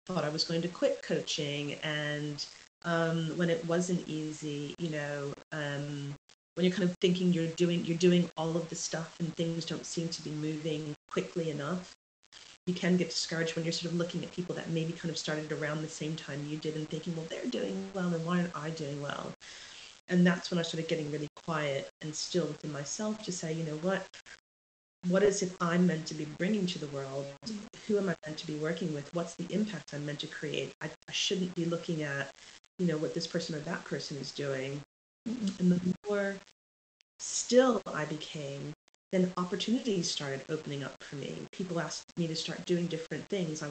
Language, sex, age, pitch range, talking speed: English, female, 30-49, 150-175 Hz, 210 wpm